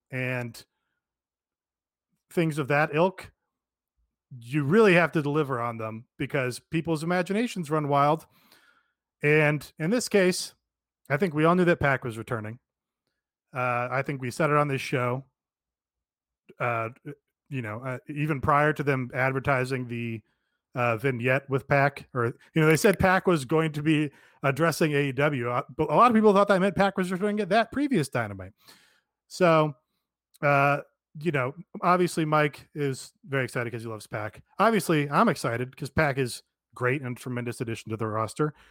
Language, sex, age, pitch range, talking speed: English, male, 30-49, 125-170 Hz, 165 wpm